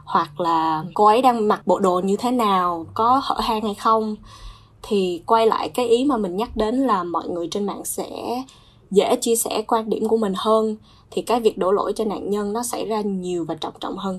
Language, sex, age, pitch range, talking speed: Vietnamese, female, 20-39, 185-230 Hz, 235 wpm